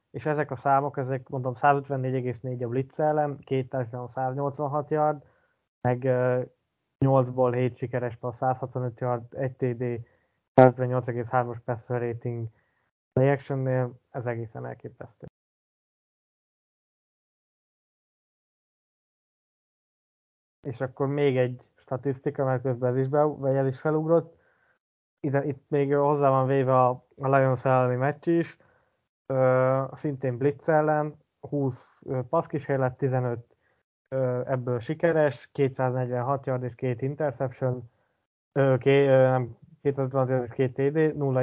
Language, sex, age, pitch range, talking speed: Hungarian, male, 20-39, 125-145 Hz, 110 wpm